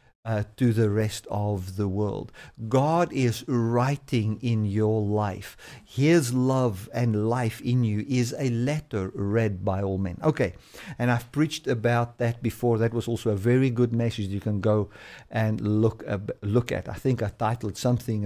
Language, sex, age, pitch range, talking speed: English, male, 50-69, 105-125 Hz, 175 wpm